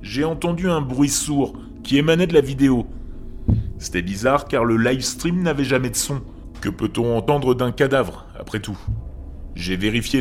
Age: 30-49